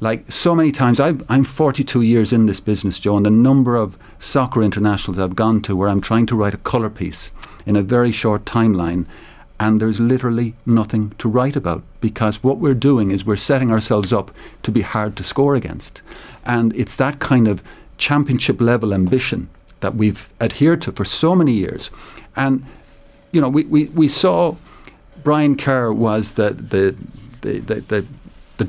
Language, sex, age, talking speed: English, male, 50-69, 180 wpm